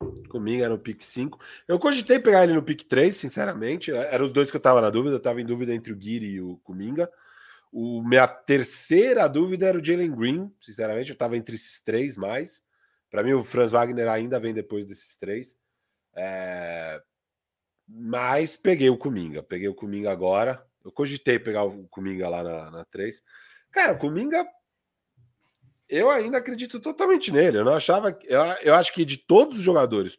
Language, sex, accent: Portuguese, male, Brazilian